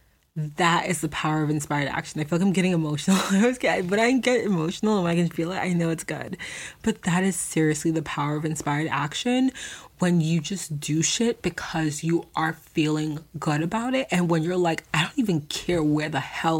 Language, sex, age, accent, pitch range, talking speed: English, female, 20-39, American, 155-185 Hz, 215 wpm